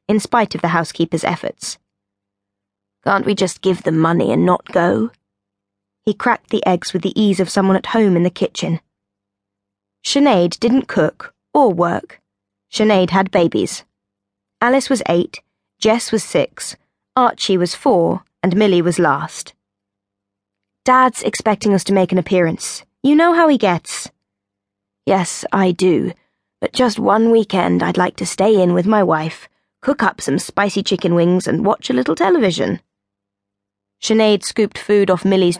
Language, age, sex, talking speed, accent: English, 20-39, female, 155 wpm, British